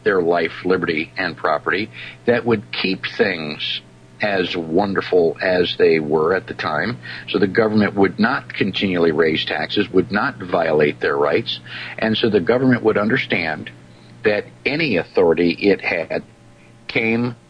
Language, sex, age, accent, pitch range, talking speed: English, male, 50-69, American, 80-120 Hz, 145 wpm